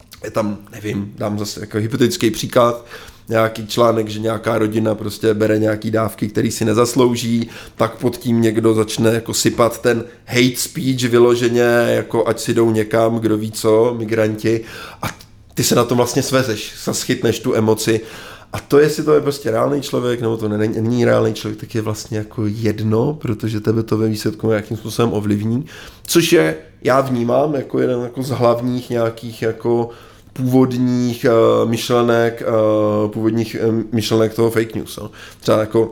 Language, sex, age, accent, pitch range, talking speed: Czech, male, 20-39, native, 110-120 Hz, 170 wpm